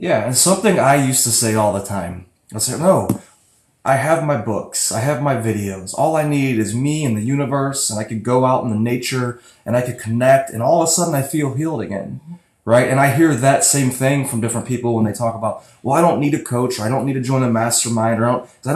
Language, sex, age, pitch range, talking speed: English, male, 20-39, 115-145 Hz, 270 wpm